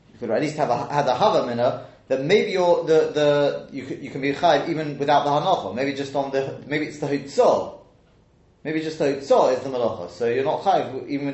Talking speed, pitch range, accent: 205 wpm, 135-180 Hz, British